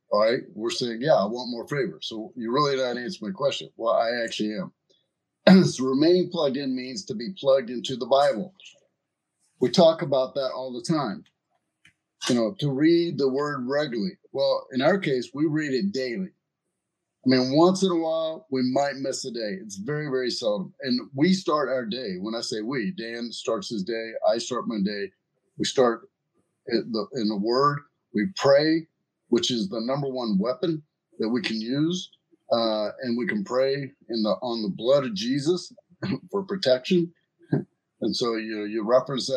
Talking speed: 185 wpm